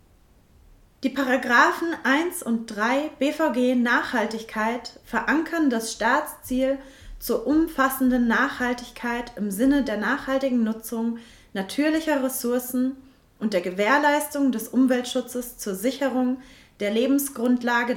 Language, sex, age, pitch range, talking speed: German, female, 30-49, 215-275 Hz, 95 wpm